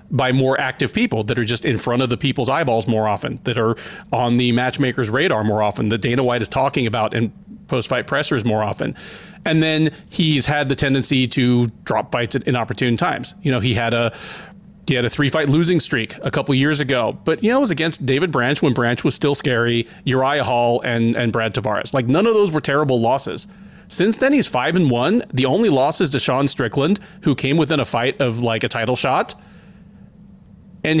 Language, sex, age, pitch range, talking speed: English, male, 30-49, 125-180 Hz, 215 wpm